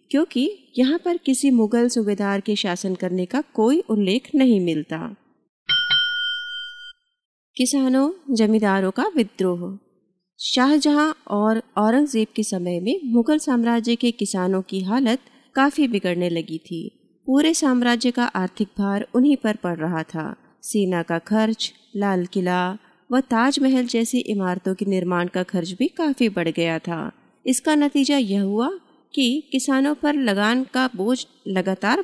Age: 30-49